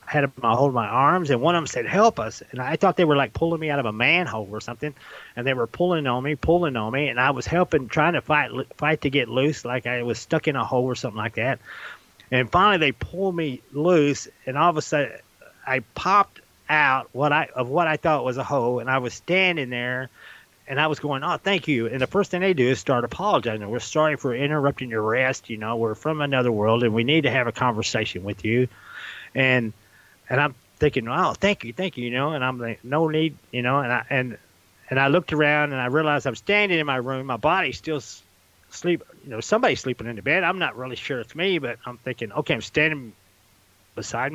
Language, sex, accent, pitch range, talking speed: English, male, American, 120-155 Hz, 240 wpm